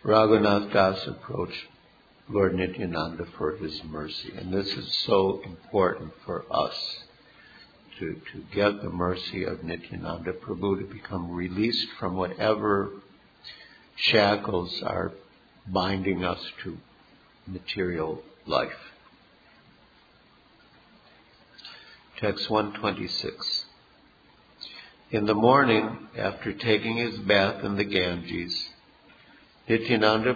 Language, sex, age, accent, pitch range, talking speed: English, male, 60-79, American, 95-110 Hz, 95 wpm